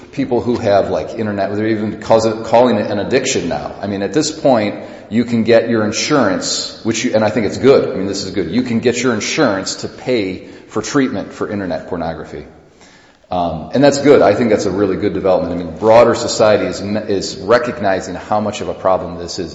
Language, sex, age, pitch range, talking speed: English, male, 40-59, 90-110 Hz, 220 wpm